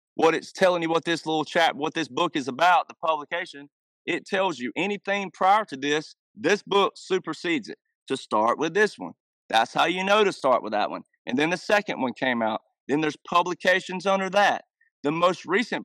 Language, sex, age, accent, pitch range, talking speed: Swedish, male, 30-49, American, 150-195 Hz, 210 wpm